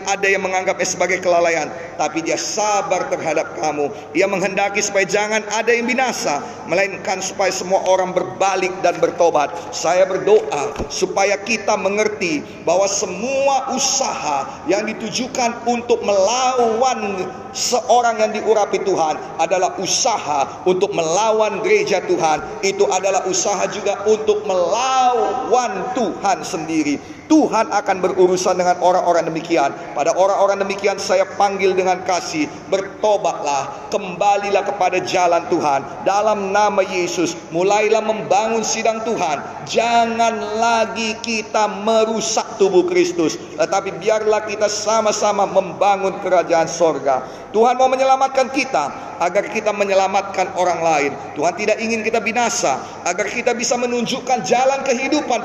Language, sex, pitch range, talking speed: Indonesian, male, 185-230 Hz, 120 wpm